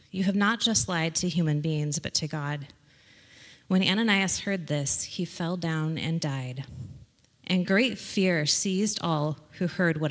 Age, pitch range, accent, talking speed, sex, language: 20-39, 150-190 Hz, American, 165 wpm, female, English